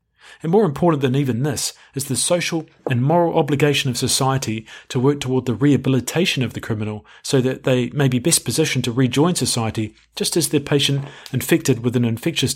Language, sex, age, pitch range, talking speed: English, male, 40-59, 115-145 Hz, 190 wpm